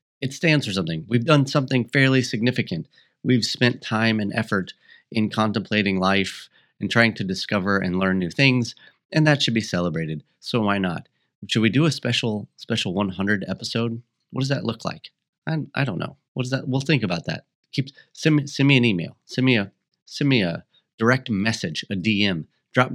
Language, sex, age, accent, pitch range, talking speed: English, male, 30-49, American, 95-130 Hz, 195 wpm